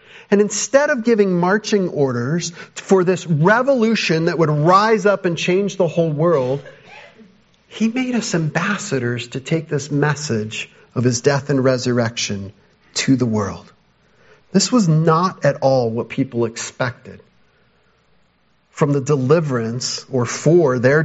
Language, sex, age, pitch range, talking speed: English, male, 40-59, 125-185 Hz, 135 wpm